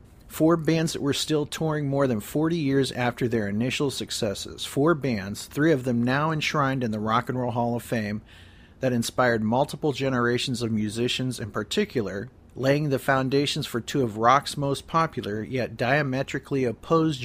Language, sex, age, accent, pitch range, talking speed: English, male, 40-59, American, 110-140 Hz, 170 wpm